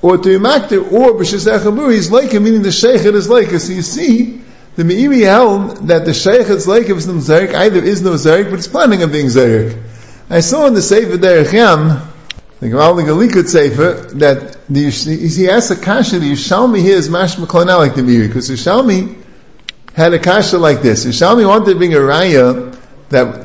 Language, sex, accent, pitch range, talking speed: English, male, American, 140-190 Hz, 200 wpm